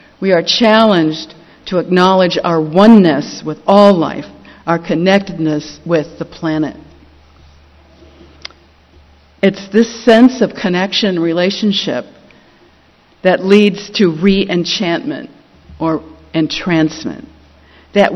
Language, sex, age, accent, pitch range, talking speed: English, female, 50-69, American, 155-195 Hz, 95 wpm